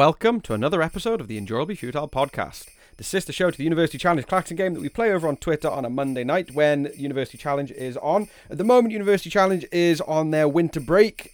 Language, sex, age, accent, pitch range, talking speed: English, male, 30-49, British, 115-150 Hz, 230 wpm